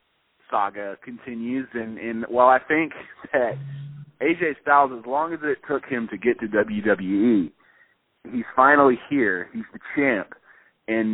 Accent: American